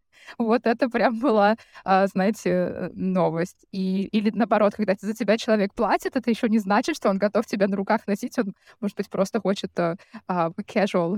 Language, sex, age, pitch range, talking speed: Russian, female, 20-39, 200-255 Hz, 165 wpm